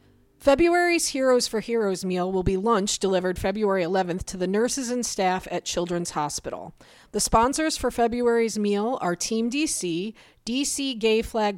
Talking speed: 155 wpm